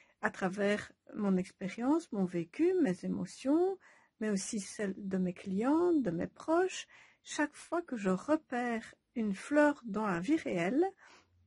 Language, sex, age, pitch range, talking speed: French, female, 60-79, 195-275 Hz, 145 wpm